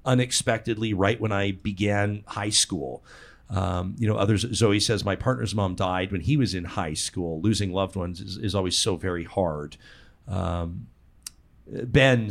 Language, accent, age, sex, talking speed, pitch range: English, American, 40-59, male, 165 wpm, 90-115 Hz